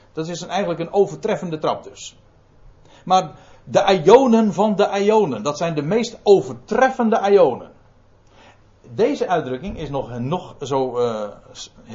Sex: male